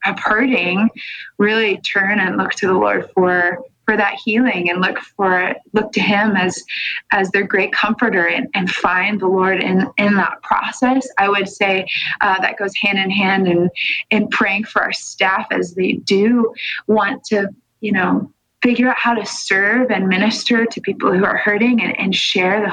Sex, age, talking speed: female, 20-39, 185 wpm